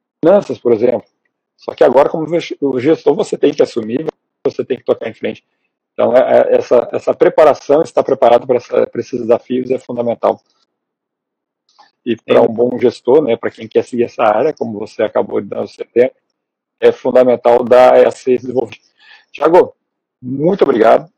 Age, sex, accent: 40-59, male, Brazilian